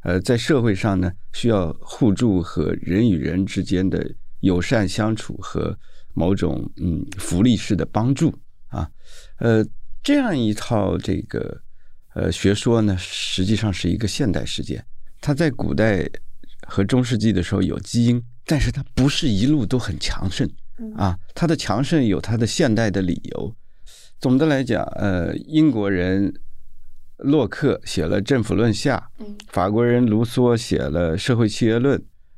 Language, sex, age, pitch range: Chinese, male, 50-69, 95-120 Hz